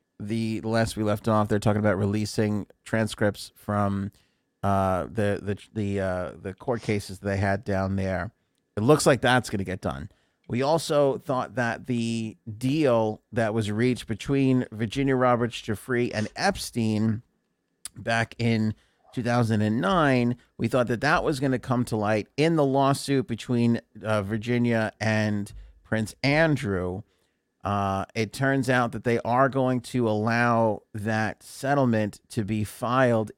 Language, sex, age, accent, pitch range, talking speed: English, male, 40-59, American, 105-125 Hz, 150 wpm